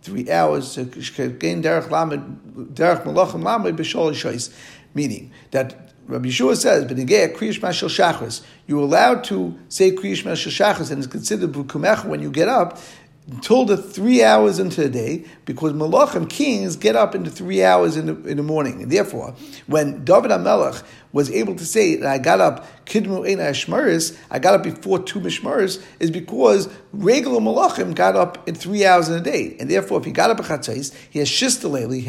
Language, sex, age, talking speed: English, male, 50-69, 155 wpm